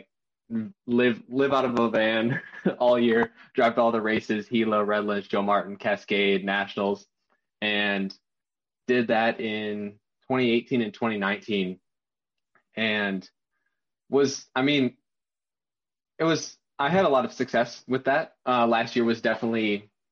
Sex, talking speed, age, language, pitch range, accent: male, 130 wpm, 20-39, English, 100-125 Hz, American